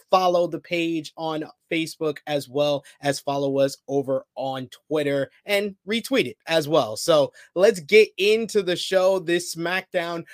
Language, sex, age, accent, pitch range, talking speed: English, male, 20-39, American, 140-170 Hz, 150 wpm